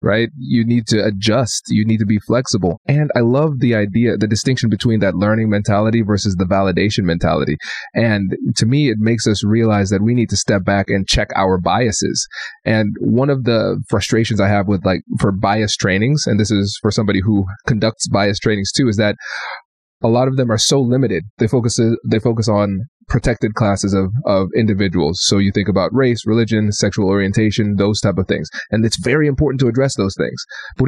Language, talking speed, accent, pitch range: English, 200 wpm, American, 105-125 Hz